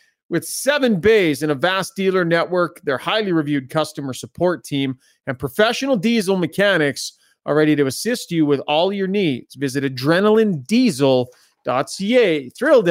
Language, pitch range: English, 140-200 Hz